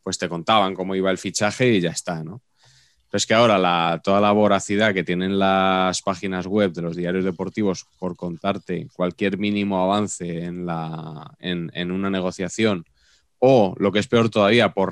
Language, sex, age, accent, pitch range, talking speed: Spanish, male, 20-39, Spanish, 90-105 Hz, 185 wpm